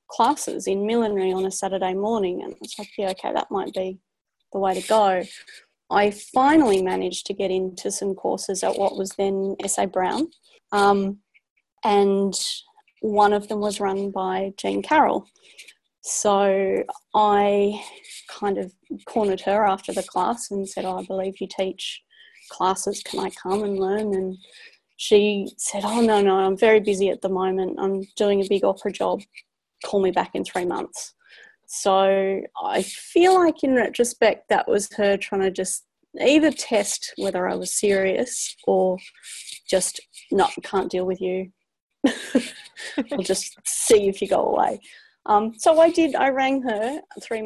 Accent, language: Australian, English